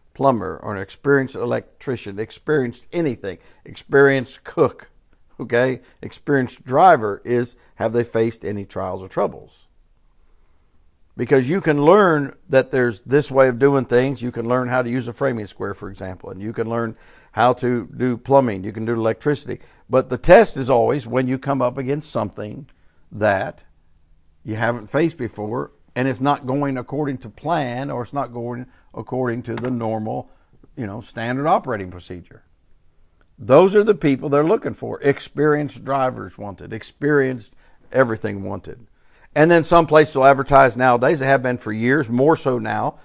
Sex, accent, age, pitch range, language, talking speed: male, American, 60-79, 110-140 Hz, English, 165 wpm